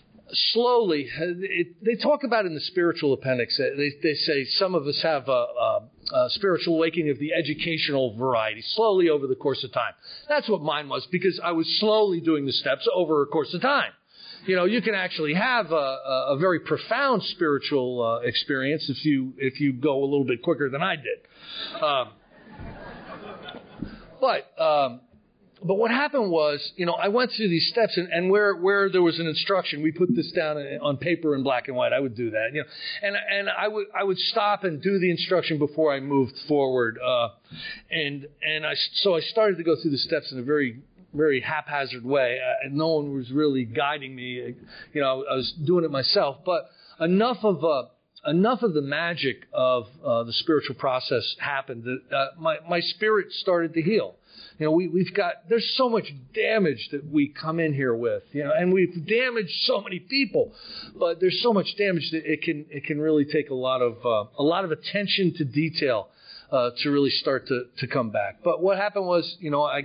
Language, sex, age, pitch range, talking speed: English, male, 50-69, 140-195 Hz, 205 wpm